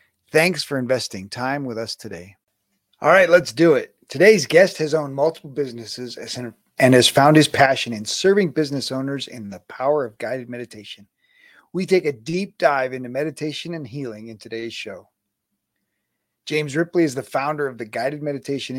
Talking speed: 170 wpm